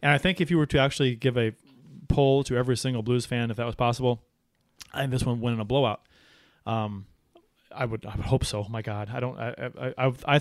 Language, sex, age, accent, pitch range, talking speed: English, male, 30-49, American, 115-145 Hz, 250 wpm